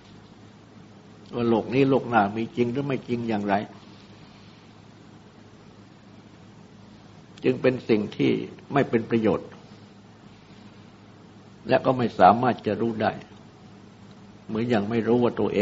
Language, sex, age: Thai, male, 60-79